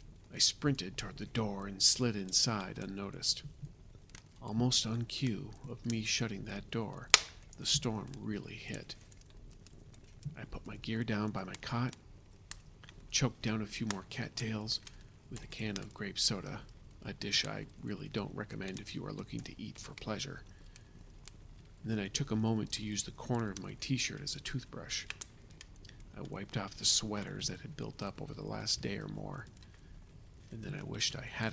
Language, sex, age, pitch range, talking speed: English, male, 40-59, 100-120 Hz, 175 wpm